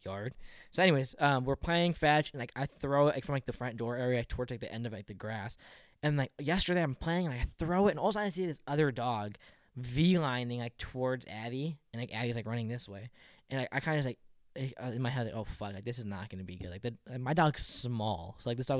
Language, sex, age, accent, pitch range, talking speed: English, male, 10-29, American, 115-145 Hz, 280 wpm